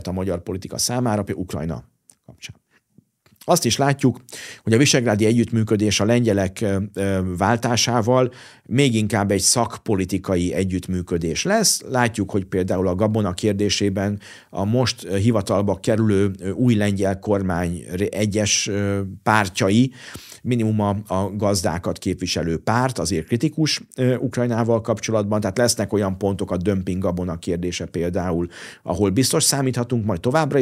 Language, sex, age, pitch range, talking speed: Hungarian, male, 50-69, 90-115 Hz, 120 wpm